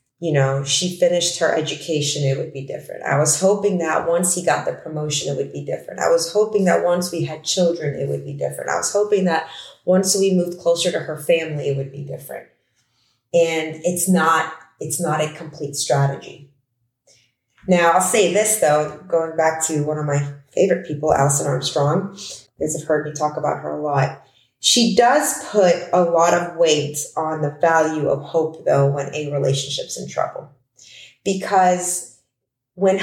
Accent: American